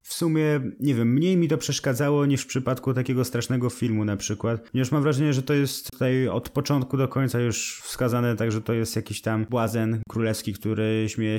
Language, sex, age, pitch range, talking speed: Polish, male, 20-39, 110-130 Hz, 205 wpm